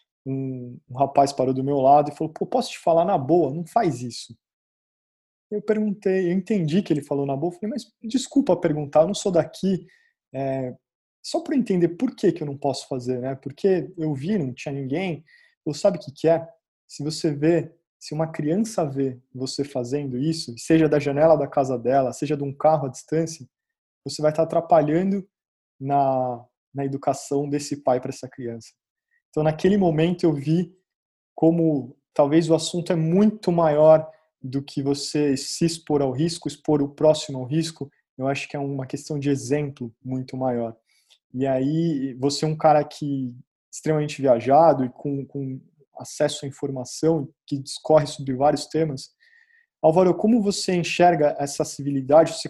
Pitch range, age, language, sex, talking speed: 140-170 Hz, 20-39, Portuguese, male, 175 wpm